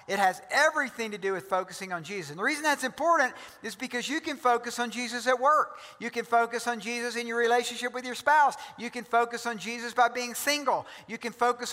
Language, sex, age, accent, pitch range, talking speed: English, male, 50-69, American, 210-285 Hz, 230 wpm